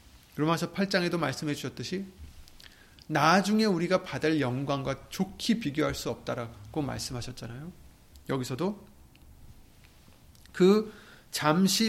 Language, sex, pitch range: Korean, male, 120-200 Hz